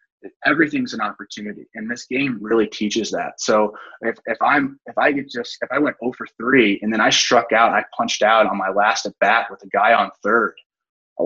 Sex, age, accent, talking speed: male, 20-39, American, 225 wpm